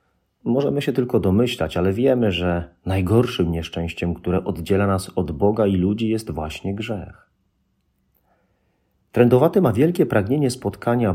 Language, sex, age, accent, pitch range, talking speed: Polish, male, 40-59, native, 90-110 Hz, 130 wpm